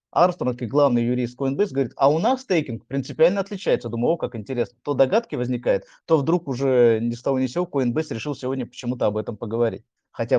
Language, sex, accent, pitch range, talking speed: Russian, male, native, 115-145 Hz, 195 wpm